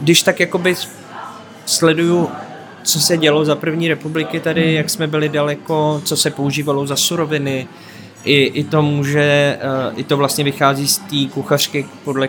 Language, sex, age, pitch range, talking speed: Czech, male, 20-39, 125-145 Hz, 155 wpm